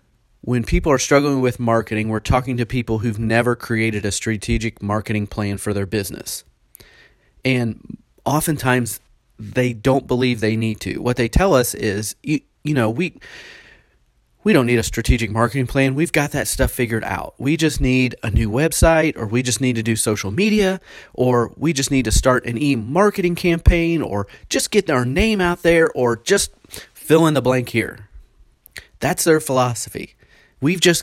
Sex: male